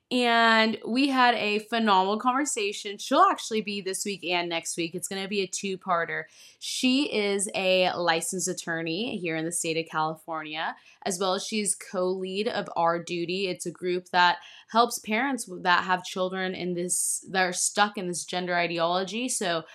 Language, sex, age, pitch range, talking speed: English, female, 20-39, 165-205 Hz, 175 wpm